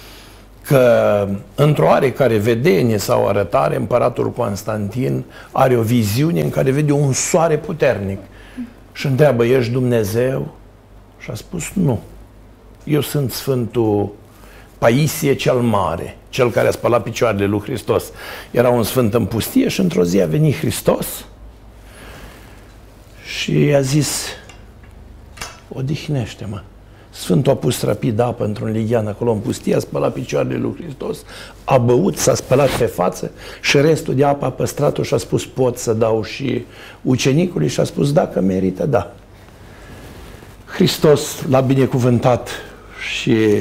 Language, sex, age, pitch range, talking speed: Romanian, male, 60-79, 105-135 Hz, 135 wpm